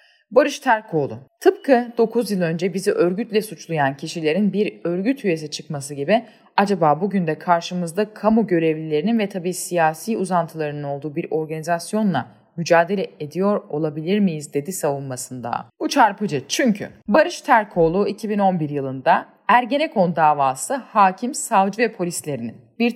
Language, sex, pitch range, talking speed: Turkish, female, 160-225 Hz, 125 wpm